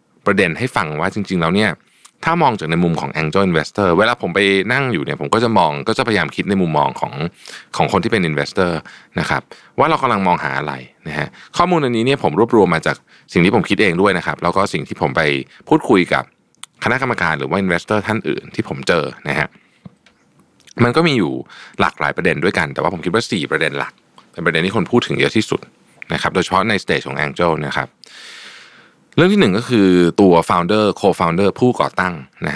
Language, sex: Thai, male